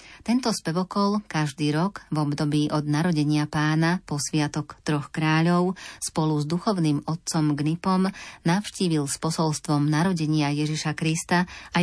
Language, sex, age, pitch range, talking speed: Slovak, female, 30-49, 150-170 Hz, 125 wpm